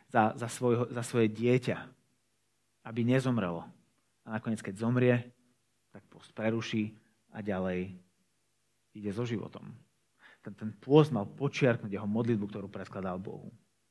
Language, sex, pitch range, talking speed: Slovak, male, 115-160 Hz, 130 wpm